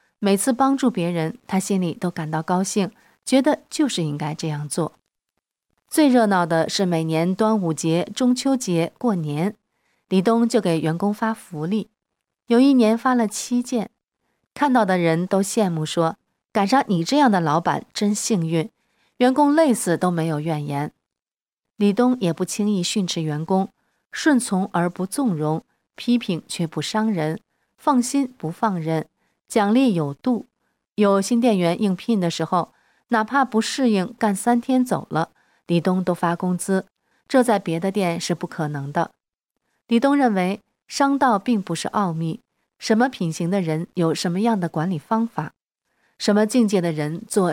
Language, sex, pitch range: Chinese, female, 170-235 Hz